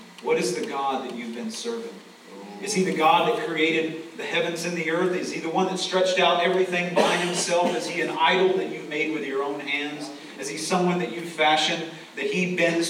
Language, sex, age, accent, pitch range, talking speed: English, male, 40-59, American, 155-190 Hz, 235 wpm